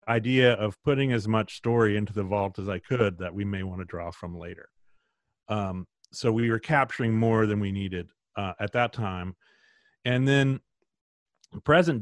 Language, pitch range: English, 100-120 Hz